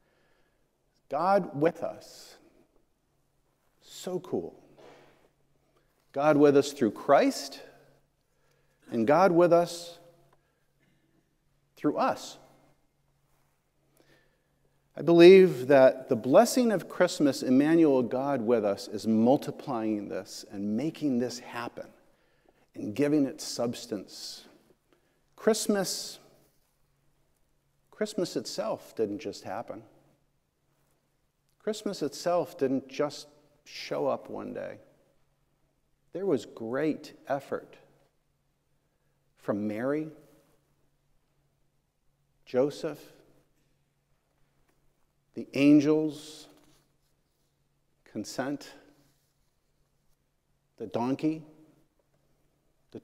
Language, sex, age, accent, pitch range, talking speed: English, male, 50-69, American, 140-175 Hz, 75 wpm